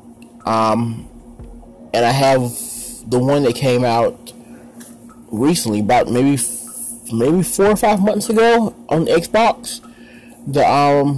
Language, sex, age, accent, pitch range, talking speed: English, male, 30-49, American, 120-155 Hz, 130 wpm